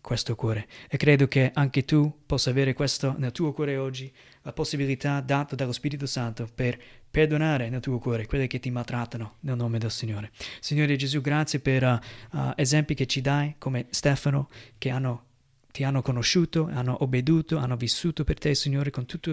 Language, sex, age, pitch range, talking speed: Italian, male, 30-49, 125-150 Hz, 175 wpm